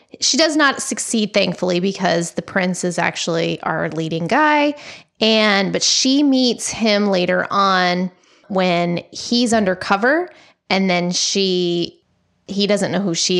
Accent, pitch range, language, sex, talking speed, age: American, 175-205 Hz, English, female, 140 wpm, 20-39